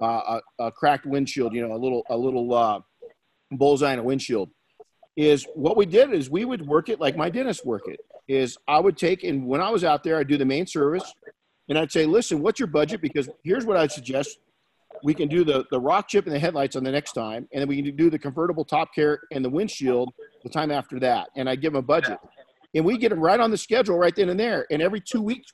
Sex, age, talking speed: male, 50-69, 260 wpm